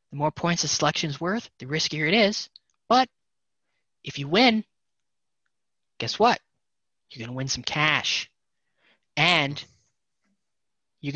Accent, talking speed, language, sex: American, 130 wpm, English, male